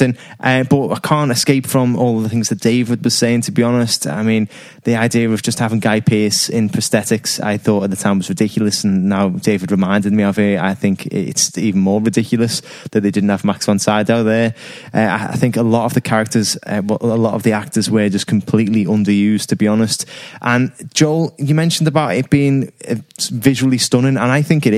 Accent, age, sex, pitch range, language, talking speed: British, 20-39, male, 105-125 Hz, English, 220 wpm